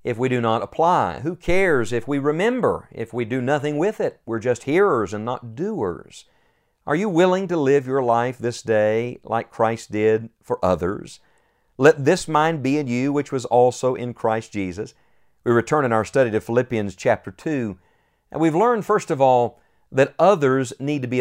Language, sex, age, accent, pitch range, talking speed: English, male, 50-69, American, 120-165 Hz, 190 wpm